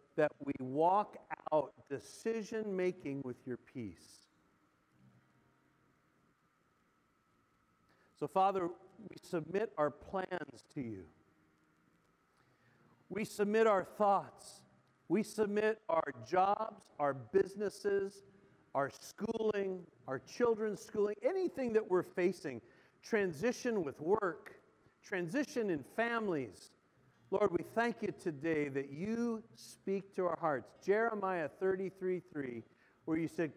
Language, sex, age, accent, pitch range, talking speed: English, male, 50-69, American, 140-205 Hz, 100 wpm